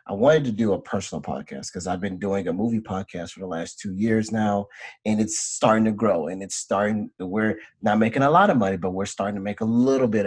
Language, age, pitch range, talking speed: English, 30-49, 95-115 Hz, 250 wpm